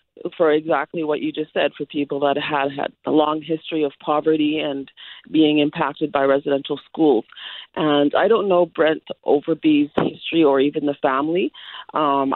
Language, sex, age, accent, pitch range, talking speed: English, female, 30-49, American, 140-160 Hz, 165 wpm